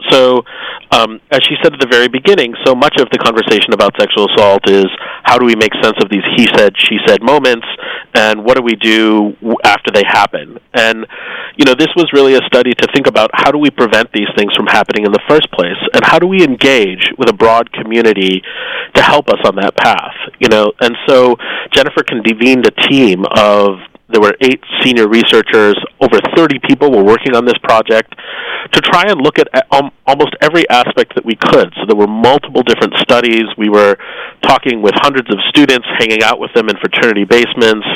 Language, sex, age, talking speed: English, male, 30-49, 205 wpm